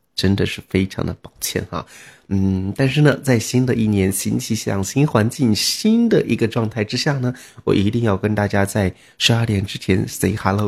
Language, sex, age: Chinese, male, 30-49